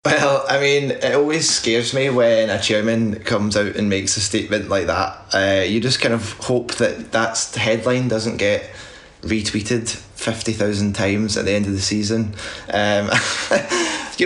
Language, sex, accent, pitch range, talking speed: English, male, British, 105-120 Hz, 170 wpm